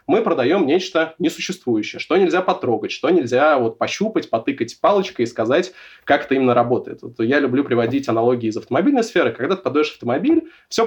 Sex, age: male, 20-39